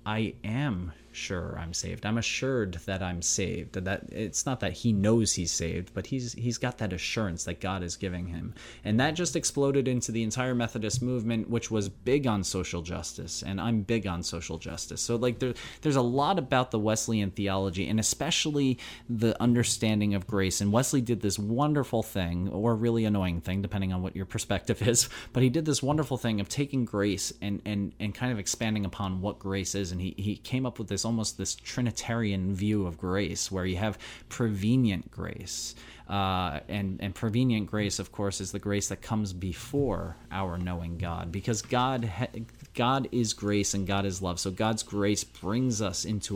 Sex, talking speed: male, 195 wpm